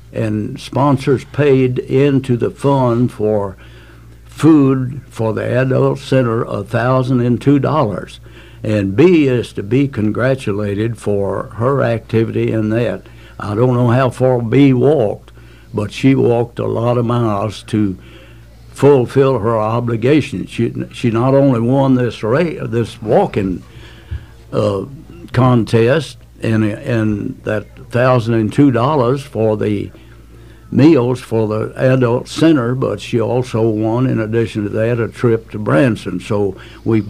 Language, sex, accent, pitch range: English, male, American, 110-130 Hz